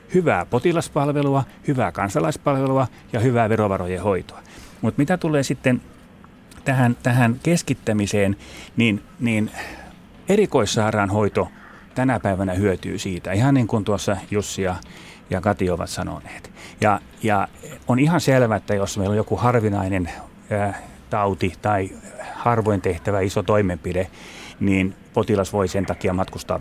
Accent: native